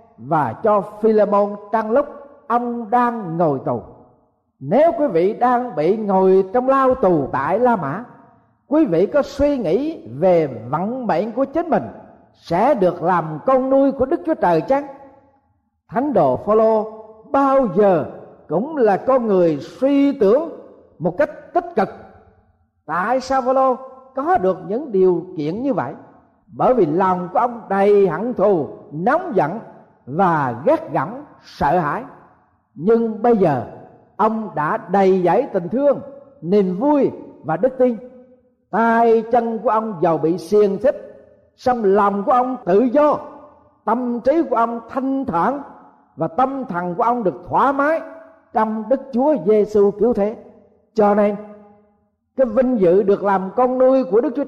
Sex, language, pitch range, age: male, Vietnamese, 195-270 Hz, 50-69